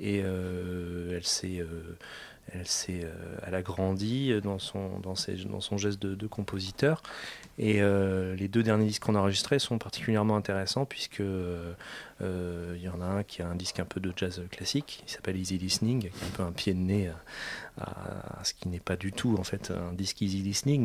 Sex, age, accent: male, 30-49, French